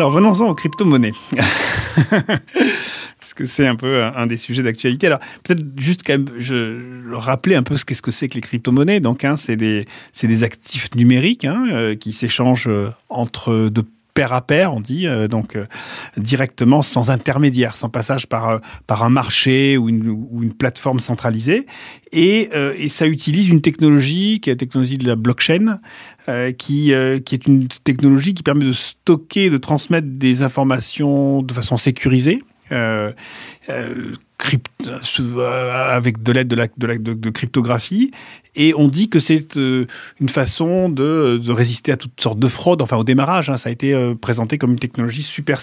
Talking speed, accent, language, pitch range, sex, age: 185 wpm, French, French, 120-150 Hz, male, 40-59